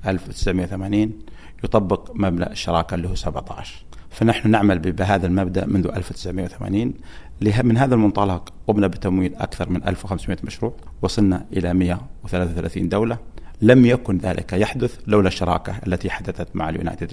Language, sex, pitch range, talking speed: Arabic, male, 85-100 Hz, 125 wpm